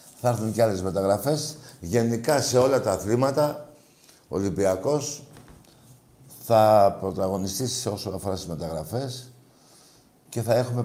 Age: 60-79